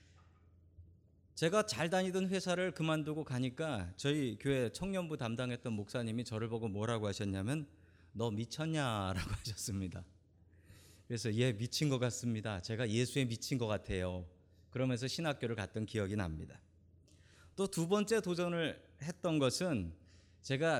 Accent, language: native, Korean